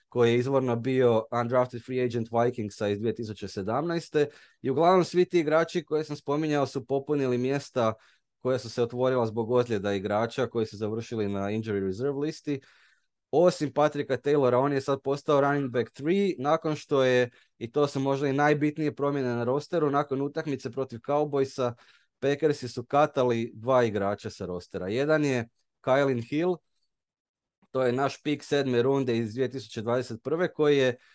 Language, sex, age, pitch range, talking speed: Croatian, male, 20-39, 115-145 Hz, 160 wpm